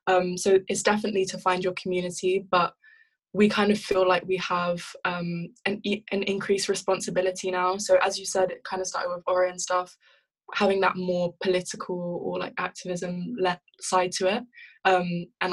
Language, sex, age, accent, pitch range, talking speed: English, female, 10-29, British, 180-195 Hz, 180 wpm